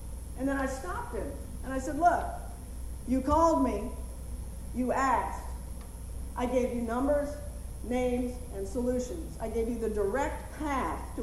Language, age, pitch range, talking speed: English, 50-69, 230-310 Hz, 150 wpm